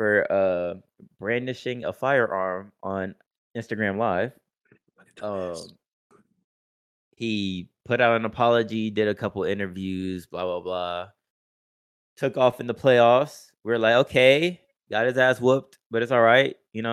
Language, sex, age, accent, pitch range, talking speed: English, male, 20-39, American, 95-120 Hz, 140 wpm